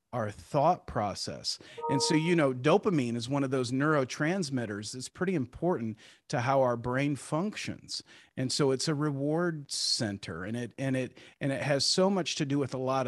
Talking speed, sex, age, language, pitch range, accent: 190 wpm, male, 40-59, English, 130-165 Hz, American